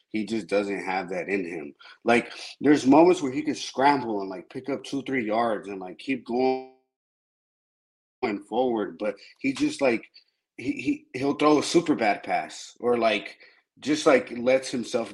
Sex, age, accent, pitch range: male, 20-39, American, 100-145 Hz